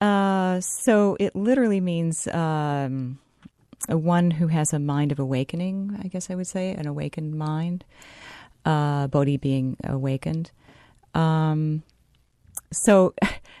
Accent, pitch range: American, 140-175 Hz